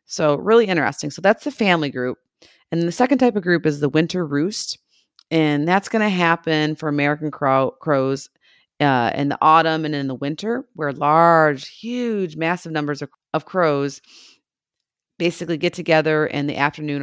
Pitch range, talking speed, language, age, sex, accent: 145-175 Hz, 170 wpm, English, 40-59, female, American